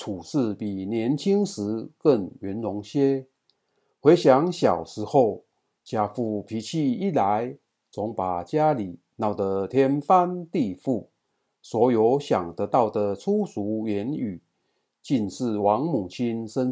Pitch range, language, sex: 105-145 Hz, Chinese, male